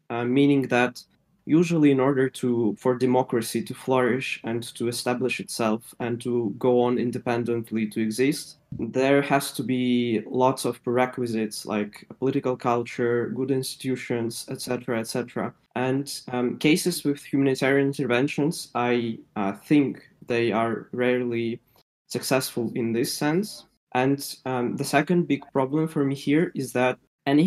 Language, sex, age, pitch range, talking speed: Russian, male, 20-39, 120-140 Hz, 140 wpm